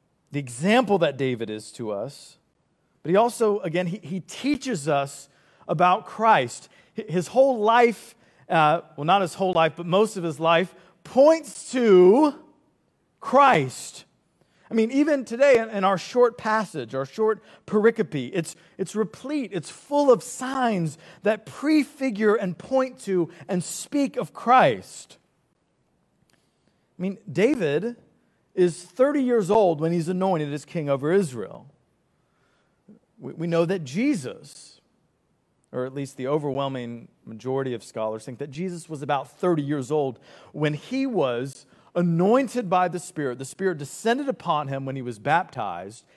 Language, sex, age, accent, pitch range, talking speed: English, male, 40-59, American, 150-225 Hz, 145 wpm